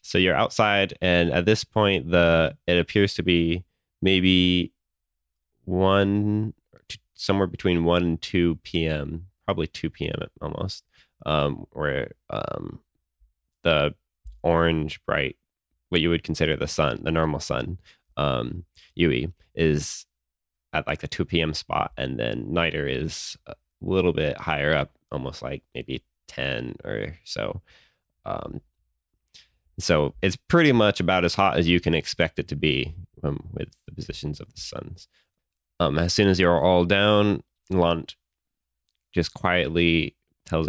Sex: male